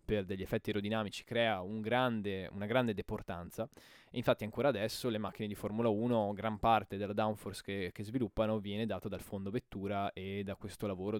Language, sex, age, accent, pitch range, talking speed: Italian, male, 20-39, native, 100-115 Hz, 190 wpm